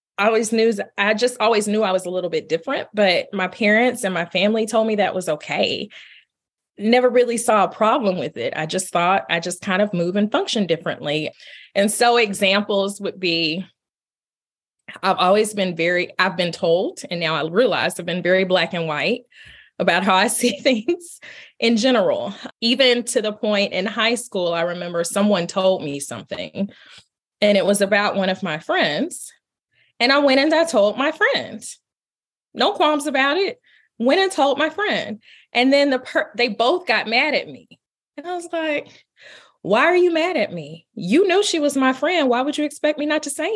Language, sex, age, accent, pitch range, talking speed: English, female, 20-39, American, 190-270 Hz, 195 wpm